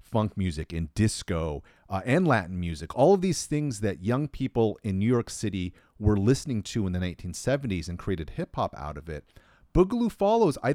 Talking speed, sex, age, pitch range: 190 wpm, male, 40-59, 85-120 Hz